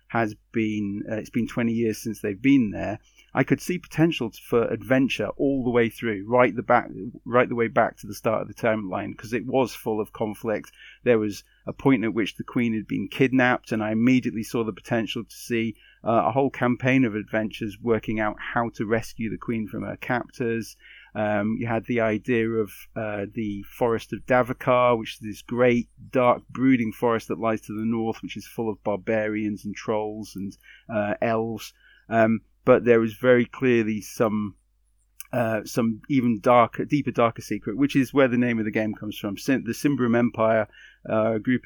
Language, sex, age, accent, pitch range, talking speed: English, male, 30-49, British, 110-120 Hz, 200 wpm